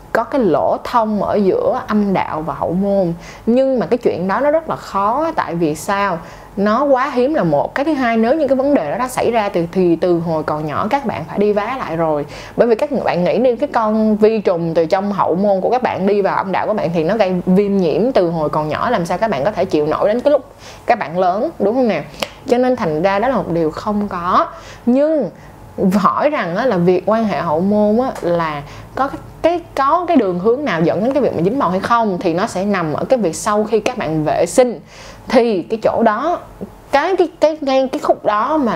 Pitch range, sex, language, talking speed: 180-245 Hz, female, Vietnamese, 250 wpm